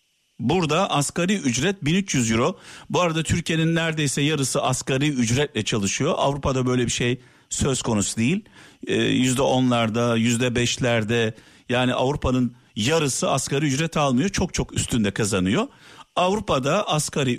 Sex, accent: male, native